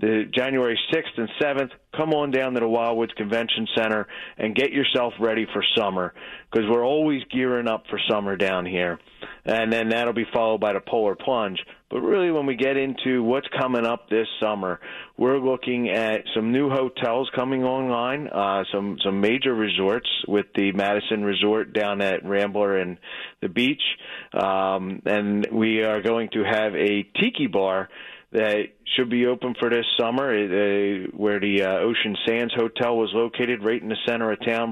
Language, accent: English, American